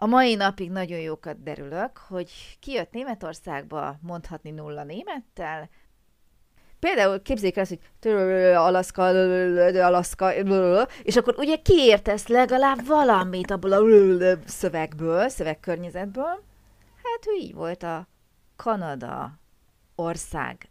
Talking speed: 100 wpm